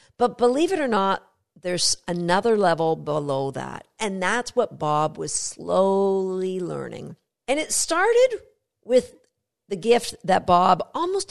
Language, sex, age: English, female, 50-69